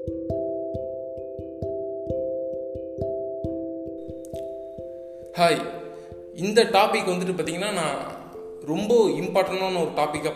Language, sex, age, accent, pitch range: Tamil, male, 20-39, native, 155-210 Hz